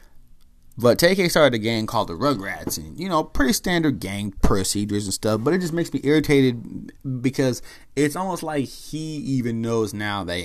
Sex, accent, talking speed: male, American, 185 wpm